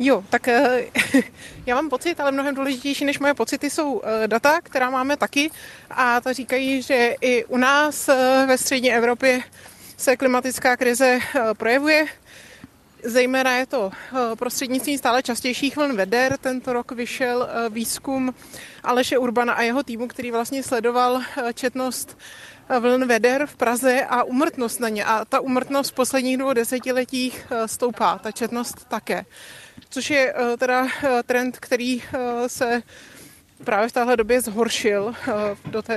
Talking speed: 140 wpm